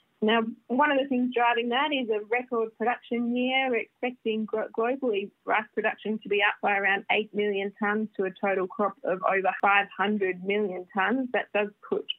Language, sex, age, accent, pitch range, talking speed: English, female, 20-39, Australian, 200-250 Hz, 180 wpm